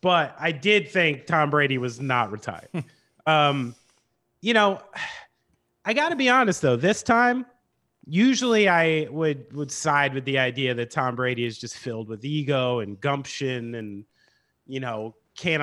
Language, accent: English, American